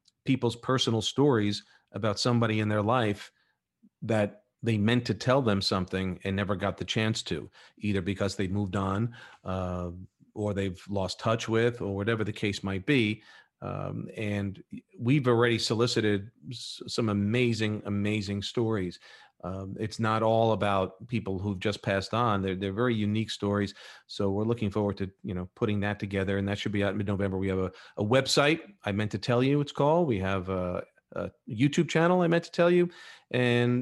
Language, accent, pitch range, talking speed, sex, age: English, American, 100-125 Hz, 185 wpm, male, 40-59